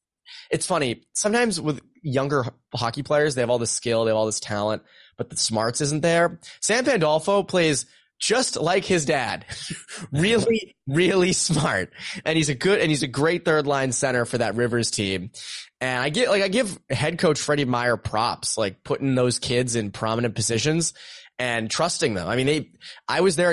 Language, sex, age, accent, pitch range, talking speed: English, male, 20-39, American, 120-160 Hz, 190 wpm